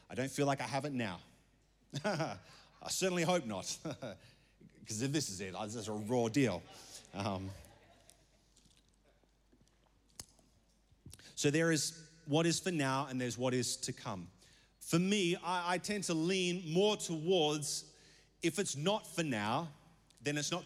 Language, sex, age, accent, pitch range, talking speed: English, male, 30-49, Australian, 120-175 Hz, 155 wpm